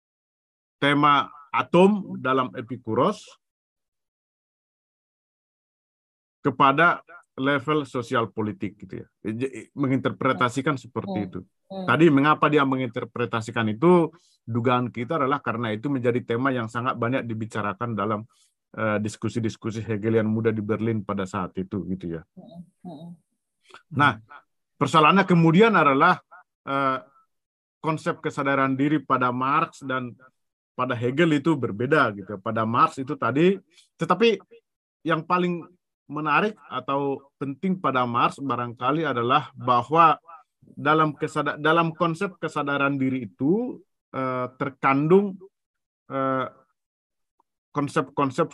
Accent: native